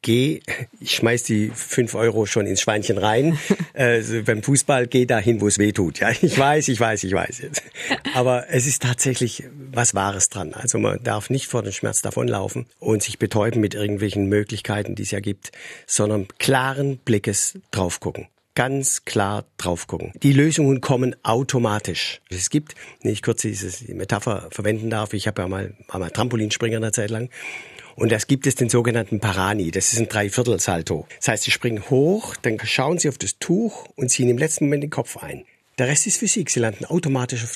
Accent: German